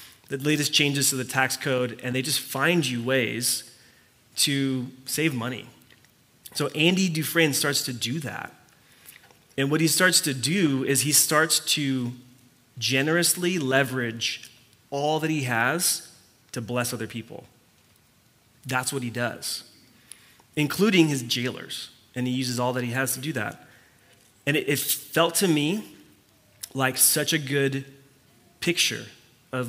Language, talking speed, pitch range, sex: English, 145 wpm, 120-145 Hz, male